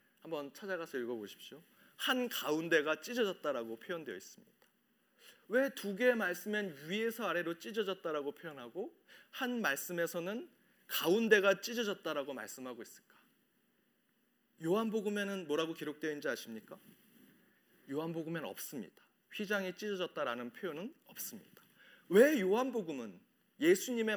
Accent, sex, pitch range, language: native, male, 175-240 Hz, Korean